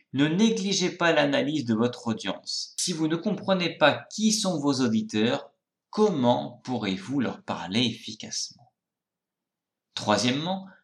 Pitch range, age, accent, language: 110-160 Hz, 30-49, French, French